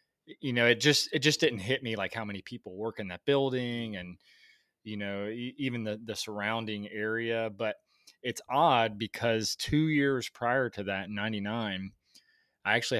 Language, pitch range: English, 105-125 Hz